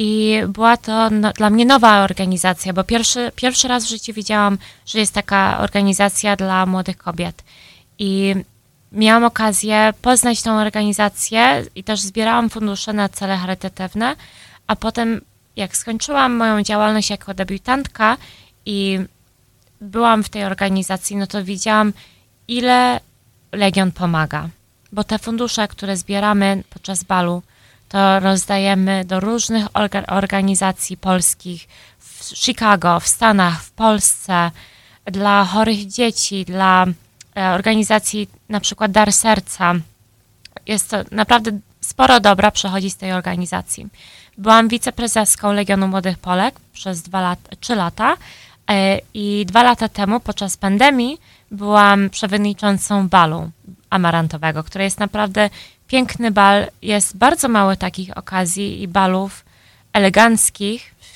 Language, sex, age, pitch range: Polish, female, 20-39, 190-220 Hz